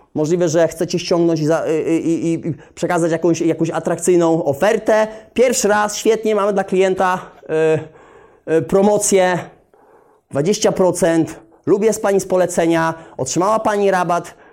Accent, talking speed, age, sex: native, 130 wpm, 30-49, male